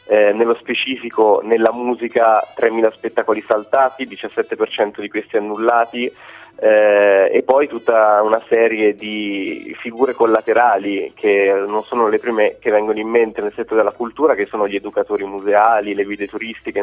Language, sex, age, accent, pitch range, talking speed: Italian, male, 20-39, native, 105-125 Hz, 150 wpm